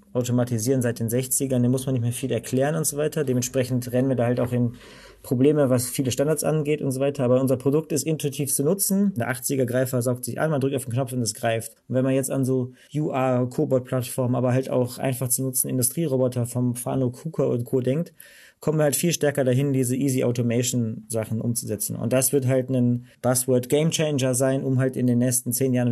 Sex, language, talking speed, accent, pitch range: male, German, 215 wpm, German, 125-145 Hz